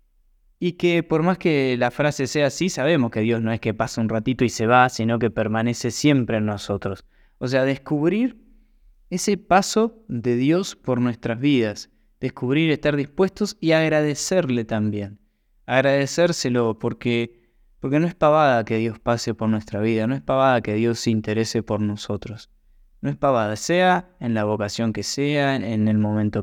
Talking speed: 175 wpm